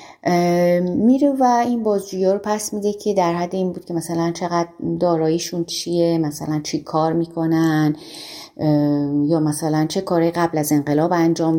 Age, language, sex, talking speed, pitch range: 30-49, Persian, female, 150 wpm, 160-225 Hz